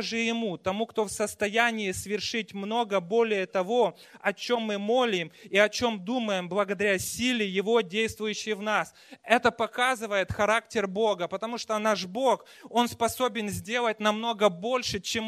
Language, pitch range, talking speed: Russian, 200-240 Hz, 150 wpm